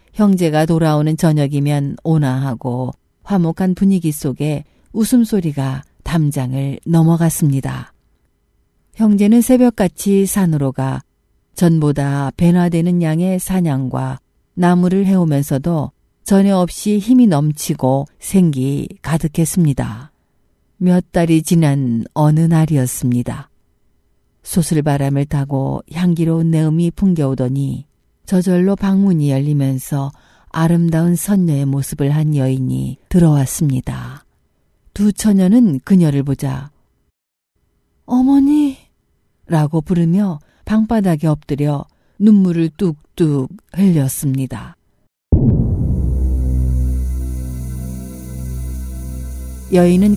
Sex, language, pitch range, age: female, Korean, 135-180 Hz, 50-69